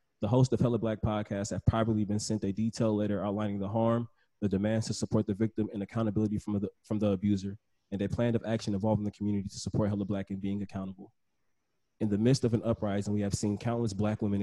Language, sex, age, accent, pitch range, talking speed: English, male, 20-39, American, 100-115 Hz, 235 wpm